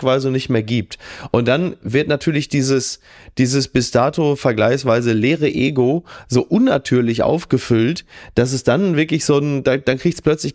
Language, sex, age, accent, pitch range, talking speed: German, male, 30-49, German, 115-145 Hz, 155 wpm